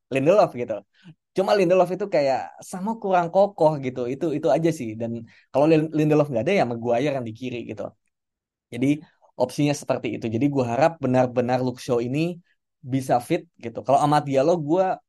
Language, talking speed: Indonesian, 170 wpm